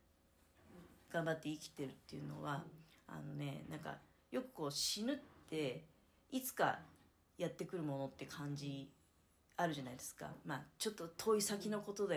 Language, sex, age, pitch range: Japanese, female, 40-59, 140-230 Hz